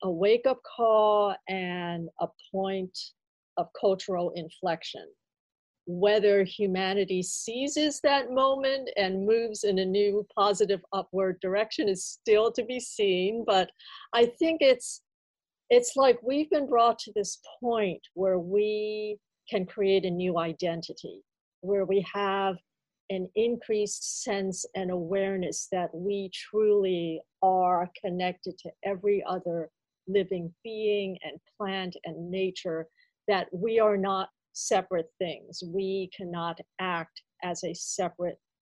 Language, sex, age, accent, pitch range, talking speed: English, female, 50-69, American, 180-220 Hz, 125 wpm